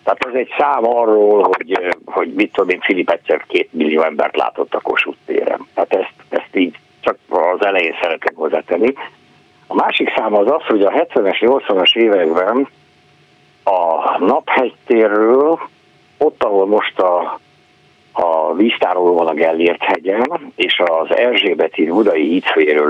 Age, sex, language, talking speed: 60-79, male, Hungarian, 140 wpm